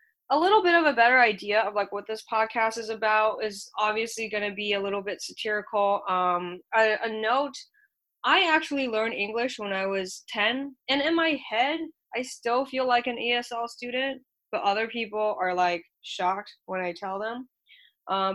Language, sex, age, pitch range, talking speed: English, female, 10-29, 195-245 Hz, 185 wpm